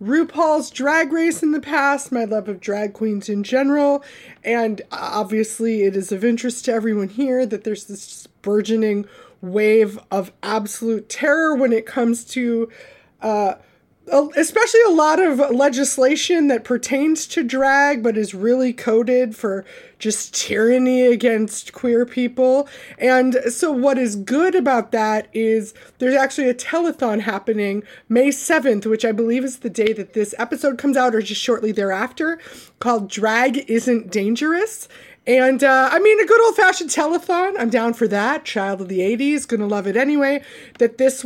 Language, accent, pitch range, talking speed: English, American, 215-280 Hz, 160 wpm